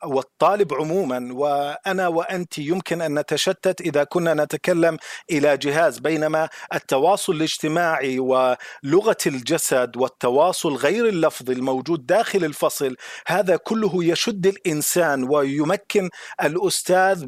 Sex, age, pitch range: male, 40-59, 155-195 Hz